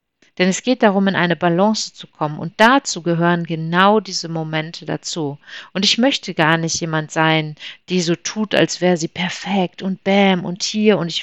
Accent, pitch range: German, 160-205 Hz